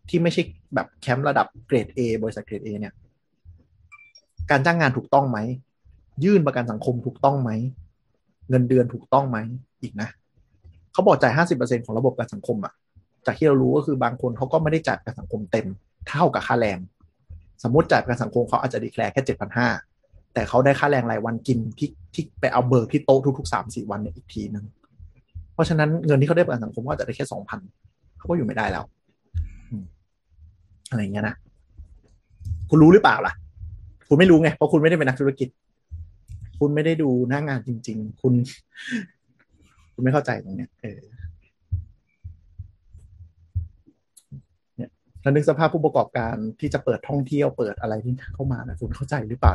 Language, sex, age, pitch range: Thai, male, 30-49, 95-135 Hz